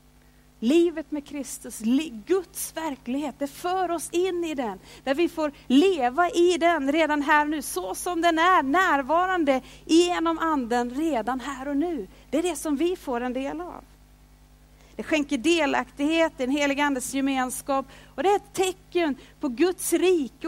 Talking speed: 165 wpm